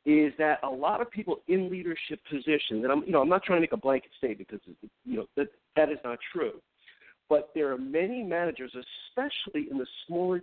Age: 50-69